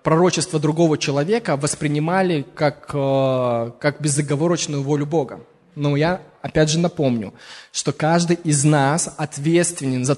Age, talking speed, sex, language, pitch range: 20-39, 120 wpm, male, Russian, 145-175 Hz